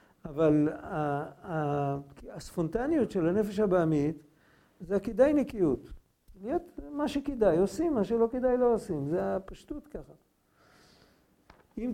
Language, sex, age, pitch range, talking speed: Hebrew, male, 50-69, 155-220 Hz, 105 wpm